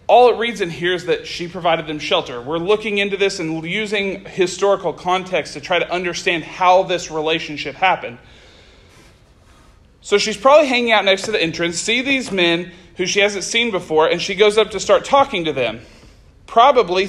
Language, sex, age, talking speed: English, male, 40-59, 190 wpm